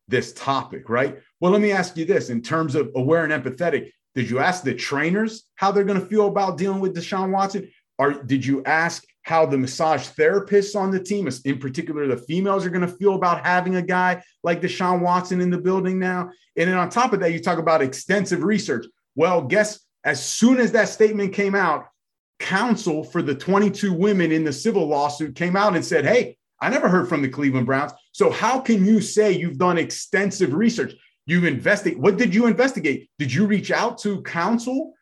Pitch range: 160-205 Hz